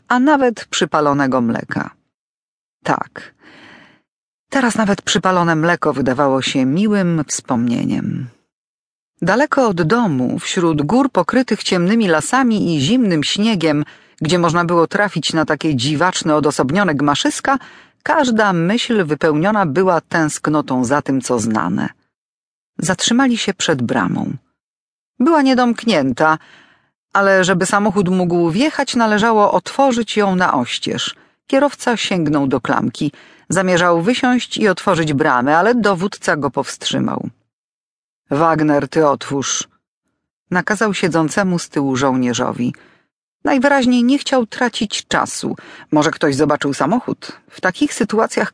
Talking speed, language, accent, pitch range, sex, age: 110 wpm, Polish, native, 155-230 Hz, female, 40-59